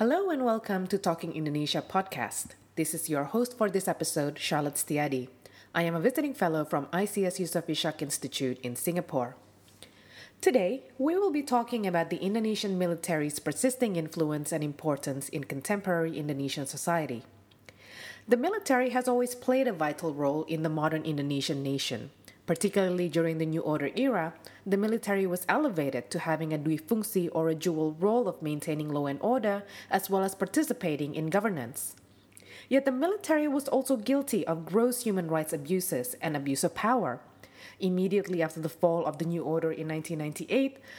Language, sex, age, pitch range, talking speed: English, female, 30-49, 150-205 Hz, 165 wpm